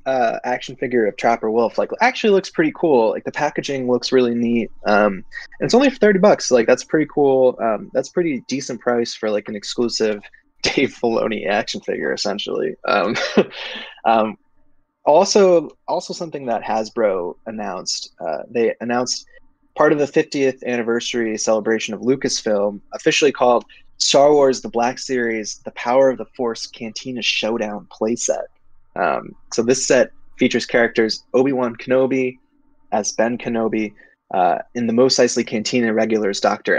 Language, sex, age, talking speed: English, male, 20-39, 155 wpm